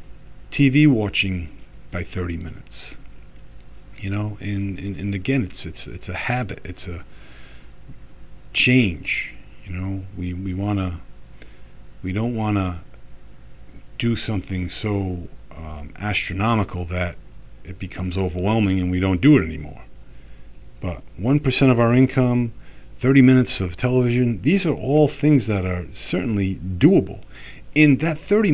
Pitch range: 90-125 Hz